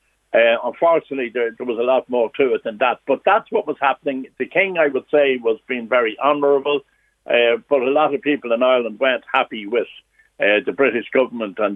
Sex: male